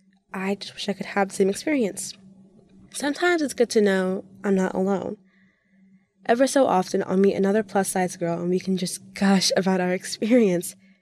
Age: 20-39